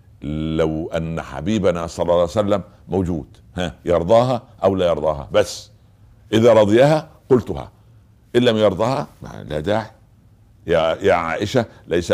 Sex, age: male, 60-79